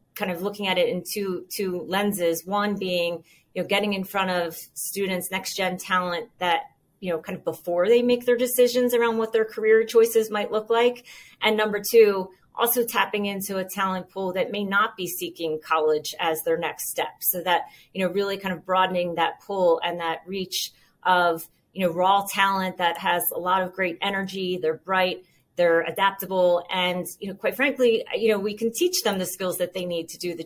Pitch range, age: 175-205 Hz, 30-49